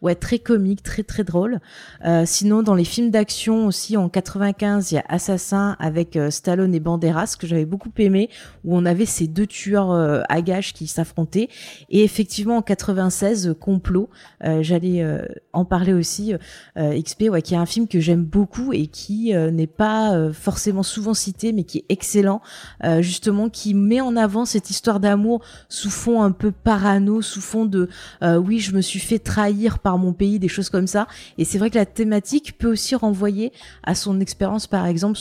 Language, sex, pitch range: French, female, 175-210 Hz